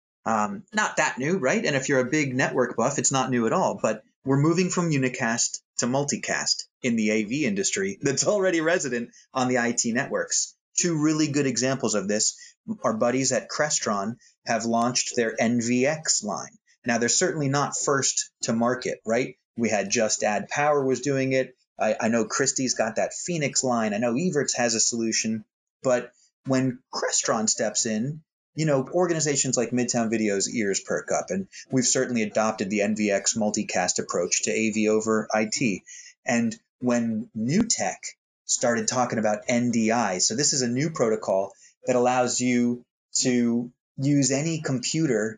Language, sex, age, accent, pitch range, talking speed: English, male, 30-49, American, 115-155 Hz, 165 wpm